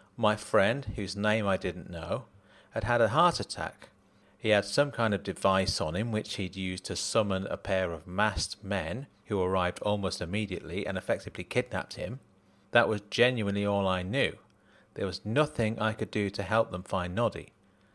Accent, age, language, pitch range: British, 40-59, English, 95-115 Hz